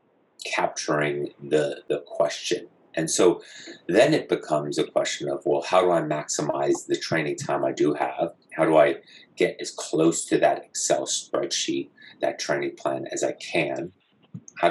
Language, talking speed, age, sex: English, 165 wpm, 30-49, male